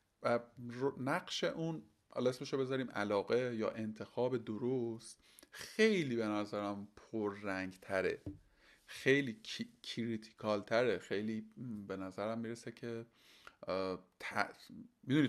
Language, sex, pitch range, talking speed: Persian, male, 110-140 Hz, 100 wpm